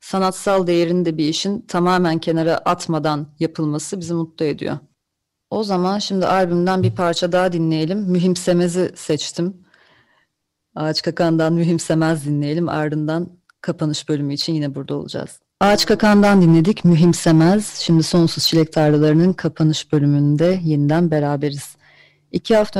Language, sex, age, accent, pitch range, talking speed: Turkish, female, 30-49, native, 160-190 Hz, 120 wpm